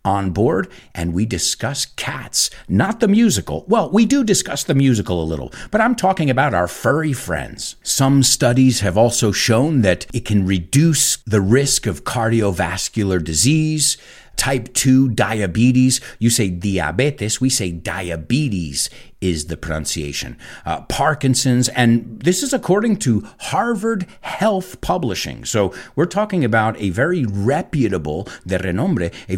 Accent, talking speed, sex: American, 145 wpm, male